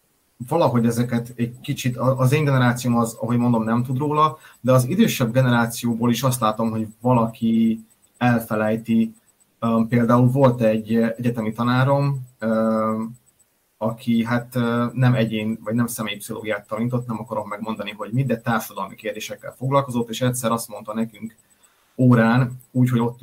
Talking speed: 140 wpm